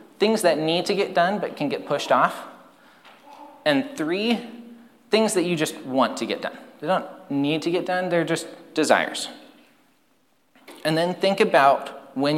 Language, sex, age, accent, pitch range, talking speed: English, male, 30-49, American, 125-210 Hz, 170 wpm